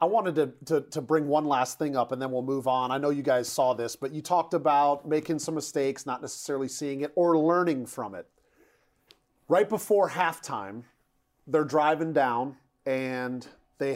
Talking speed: 190 wpm